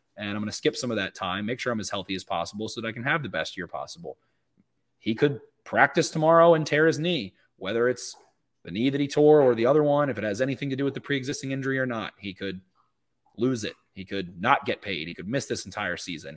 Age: 30-49